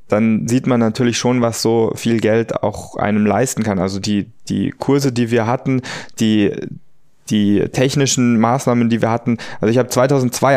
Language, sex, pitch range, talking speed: German, male, 110-125 Hz, 175 wpm